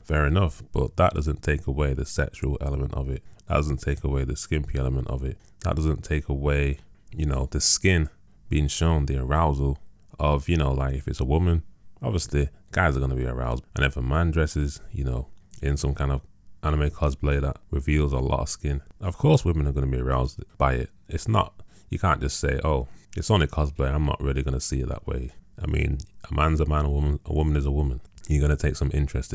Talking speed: 235 wpm